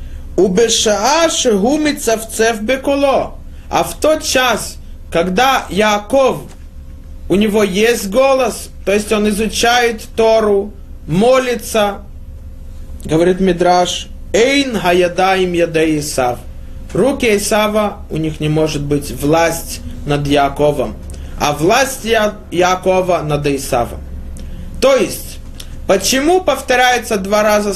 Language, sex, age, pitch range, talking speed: Russian, male, 20-39, 140-230 Hz, 100 wpm